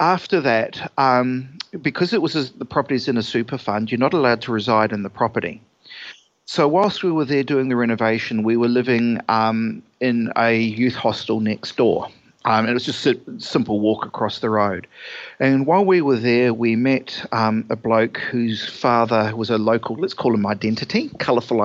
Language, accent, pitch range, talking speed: English, Australian, 110-135 Hz, 190 wpm